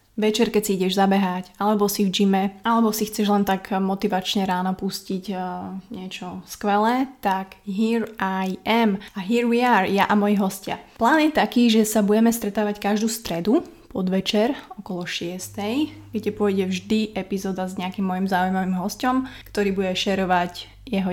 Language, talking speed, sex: Slovak, 160 wpm, female